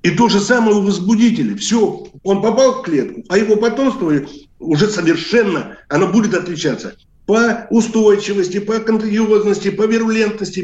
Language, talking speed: Russian, 140 wpm